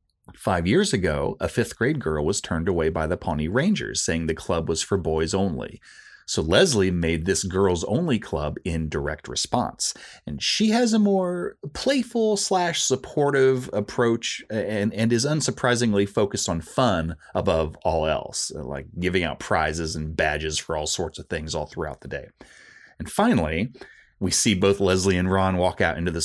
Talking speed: 165 wpm